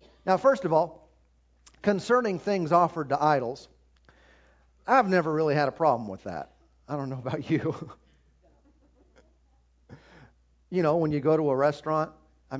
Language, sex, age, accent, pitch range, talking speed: English, male, 50-69, American, 135-165 Hz, 150 wpm